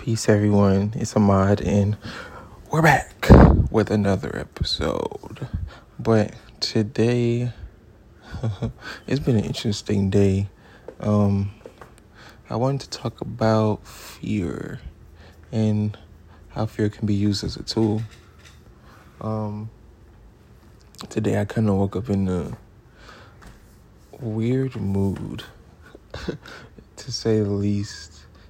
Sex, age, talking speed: male, 20-39, 100 wpm